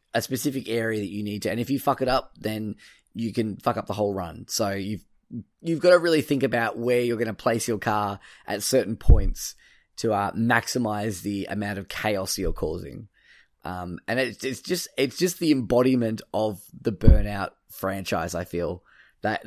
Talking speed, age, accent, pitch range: 195 wpm, 10-29, Australian, 100-125 Hz